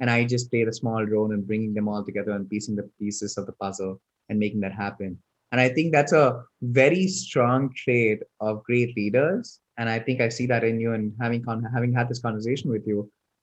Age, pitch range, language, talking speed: 20-39, 110-130 Hz, English, 225 wpm